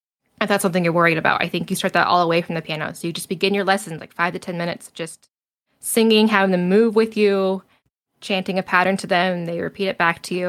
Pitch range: 175-200 Hz